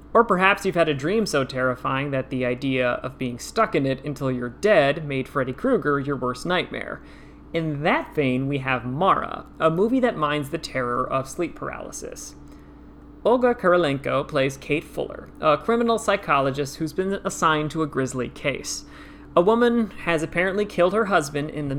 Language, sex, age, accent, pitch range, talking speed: English, male, 30-49, American, 135-185 Hz, 175 wpm